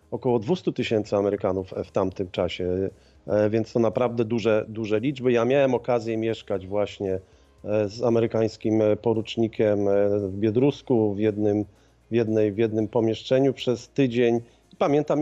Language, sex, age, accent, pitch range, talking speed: Polish, male, 40-59, native, 105-140 Hz, 130 wpm